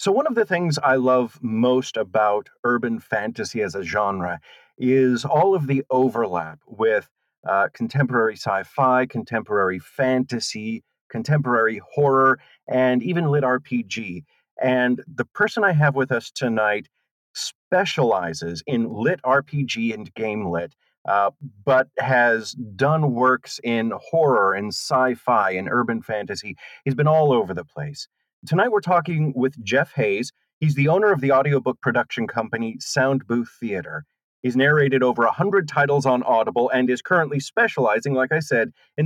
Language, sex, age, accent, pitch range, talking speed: English, male, 40-59, American, 115-145 Hz, 145 wpm